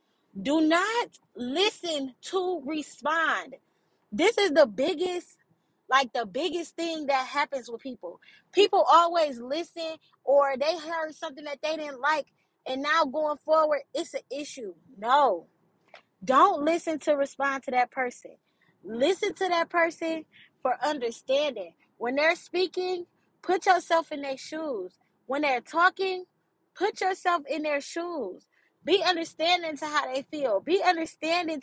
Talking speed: 140 wpm